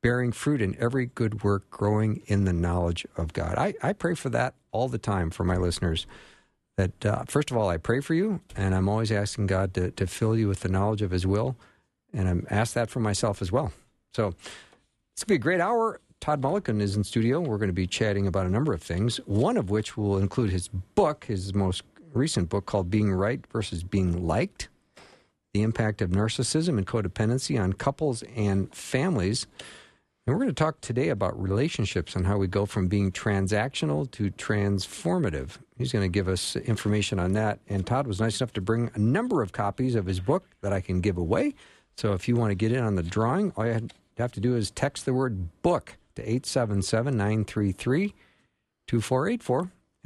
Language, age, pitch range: English, 50-69, 95-120 Hz